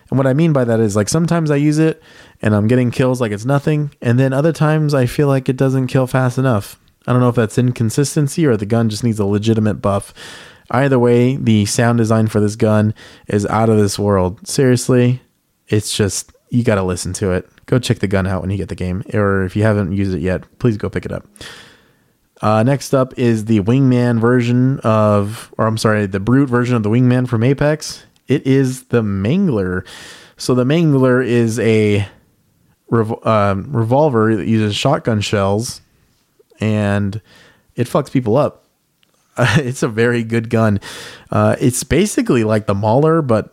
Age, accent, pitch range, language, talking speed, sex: 20-39, American, 105-130 Hz, English, 195 wpm, male